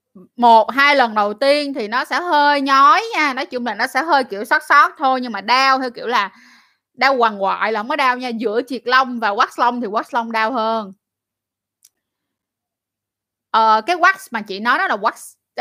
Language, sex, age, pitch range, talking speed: Vietnamese, female, 20-39, 210-280 Hz, 210 wpm